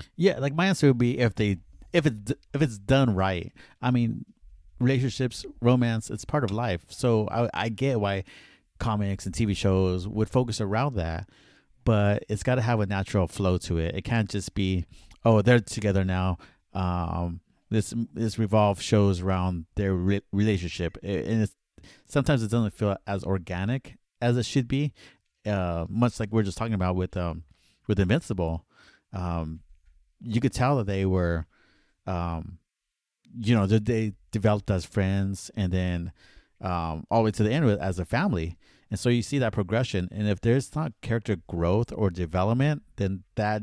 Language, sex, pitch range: English, male, 95-120 Hz